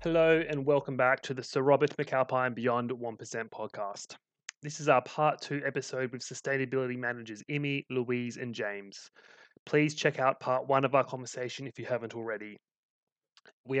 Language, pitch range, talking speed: English, 120-140 Hz, 165 wpm